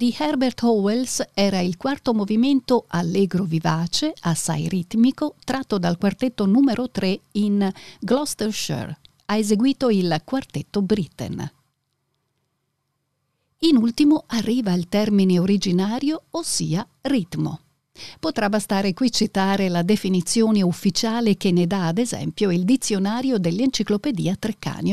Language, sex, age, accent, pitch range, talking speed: Italian, female, 50-69, native, 175-245 Hz, 110 wpm